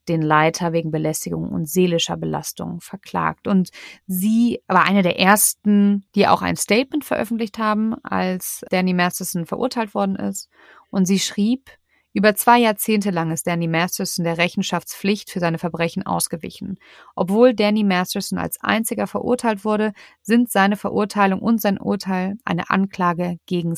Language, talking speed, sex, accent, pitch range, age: German, 145 wpm, female, German, 175-210 Hz, 30-49